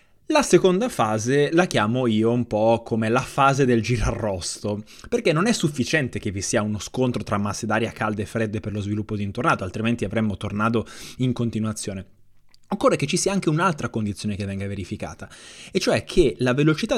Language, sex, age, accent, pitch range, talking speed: Italian, male, 20-39, native, 115-165 Hz, 190 wpm